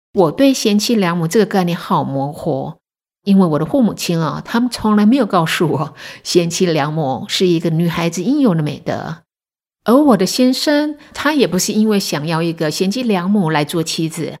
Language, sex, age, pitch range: Chinese, female, 50-69, 160-215 Hz